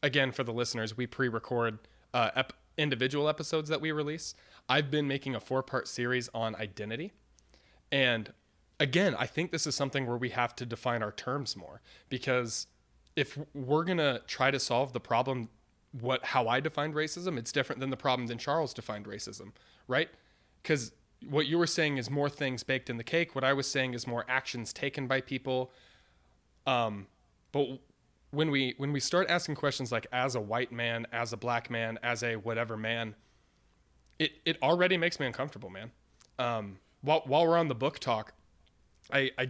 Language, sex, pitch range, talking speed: English, male, 115-145 Hz, 185 wpm